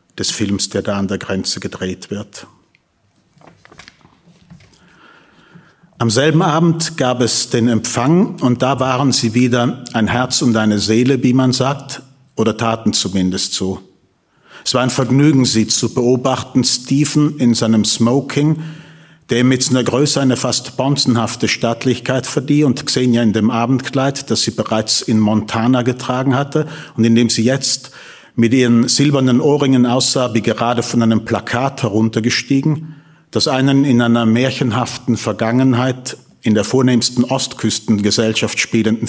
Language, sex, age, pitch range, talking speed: German, male, 40-59, 115-140 Hz, 145 wpm